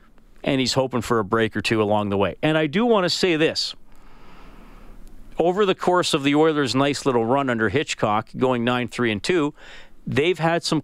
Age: 40-59